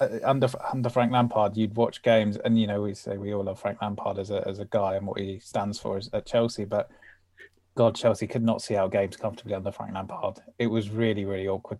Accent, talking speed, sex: British, 240 wpm, male